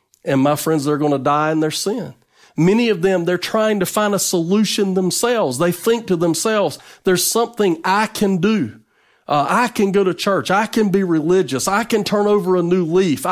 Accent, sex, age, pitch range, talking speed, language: American, male, 40-59, 145-205 Hz, 205 wpm, English